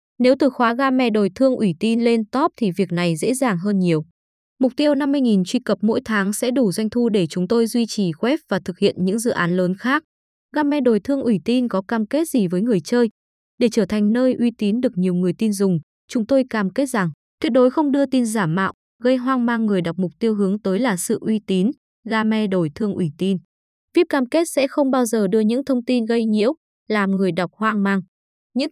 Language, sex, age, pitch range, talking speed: Vietnamese, female, 20-39, 195-255 Hz, 240 wpm